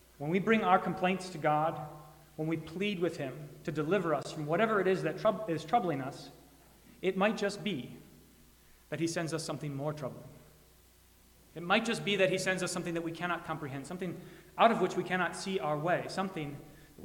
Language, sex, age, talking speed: English, male, 30-49, 205 wpm